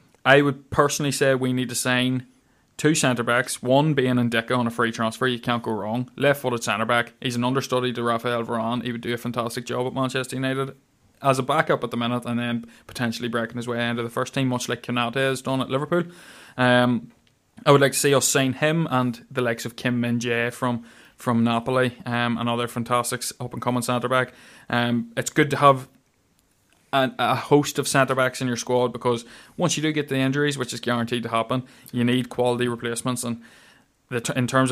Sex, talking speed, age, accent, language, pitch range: male, 210 wpm, 20-39, Irish, English, 120-130 Hz